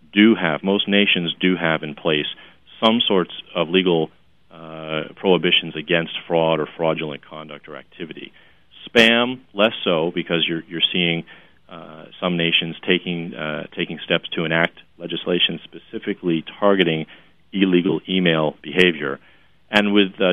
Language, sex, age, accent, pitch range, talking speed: English, male, 40-59, American, 80-95 Hz, 135 wpm